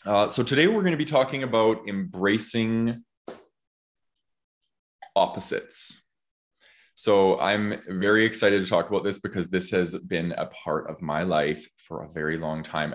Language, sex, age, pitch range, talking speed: English, male, 20-39, 85-105 Hz, 155 wpm